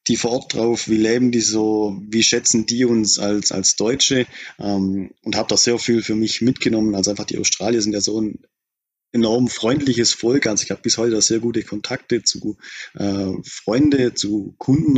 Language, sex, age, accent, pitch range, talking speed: German, male, 30-49, German, 100-120 Hz, 195 wpm